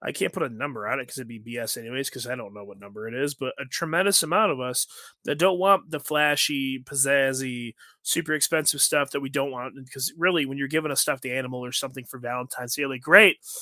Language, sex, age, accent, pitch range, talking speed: English, male, 20-39, American, 135-180 Hz, 240 wpm